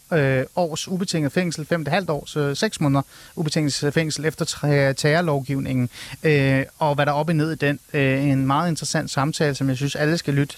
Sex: male